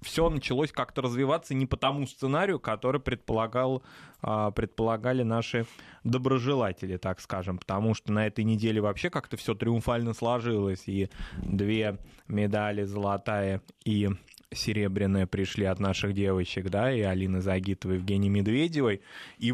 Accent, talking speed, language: native, 130 wpm, Russian